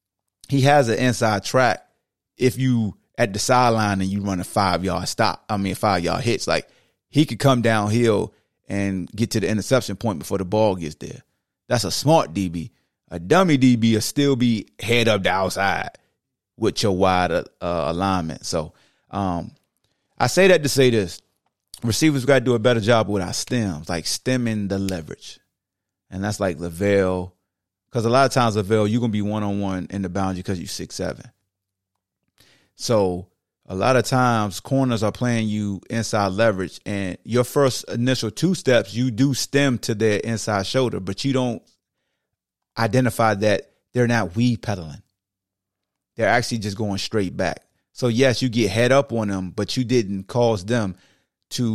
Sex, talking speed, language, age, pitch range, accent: male, 175 wpm, English, 30-49, 95-125 Hz, American